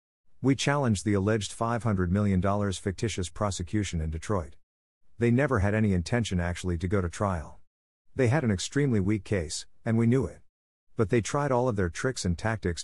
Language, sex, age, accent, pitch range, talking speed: English, male, 50-69, American, 90-115 Hz, 180 wpm